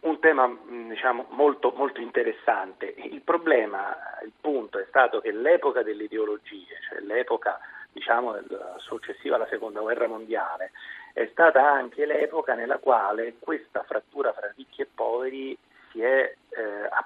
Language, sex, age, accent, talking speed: Italian, male, 40-59, native, 140 wpm